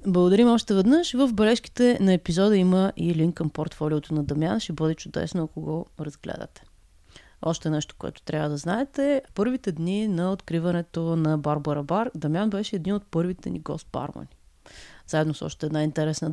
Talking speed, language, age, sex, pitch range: 165 wpm, Bulgarian, 30-49, female, 155-210 Hz